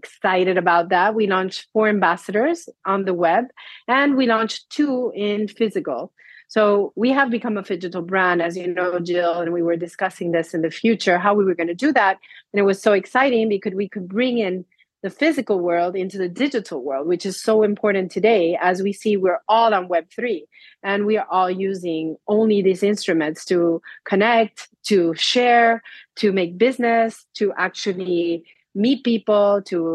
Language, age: English, 30-49